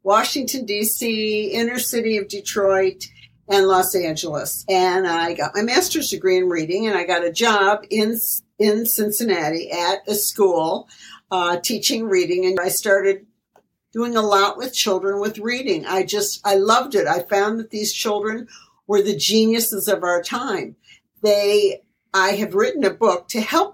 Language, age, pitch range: English, 60-79, 190-230 Hz